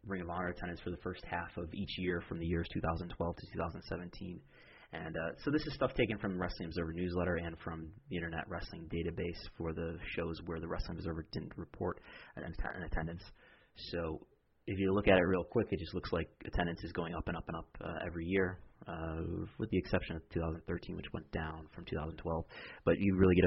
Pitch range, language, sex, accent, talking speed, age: 80-95 Hz, English, male, American, 215 wpm, 30-49